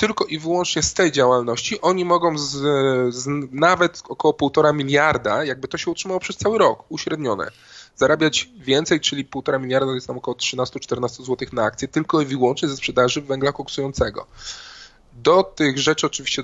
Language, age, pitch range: Polish, 20-39, 125-150 Hz